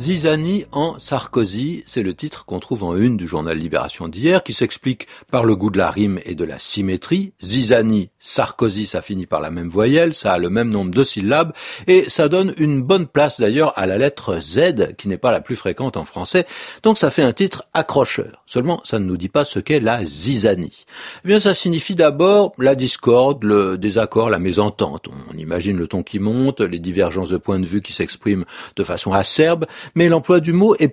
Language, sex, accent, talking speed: French, male, French, 210 wpm